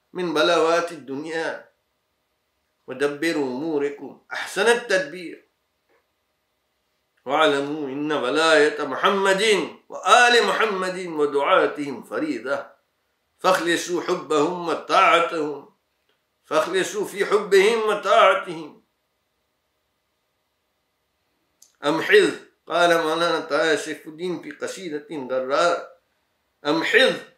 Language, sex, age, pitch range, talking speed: English, male, 50-69, 150-195 Hz, 70 wpm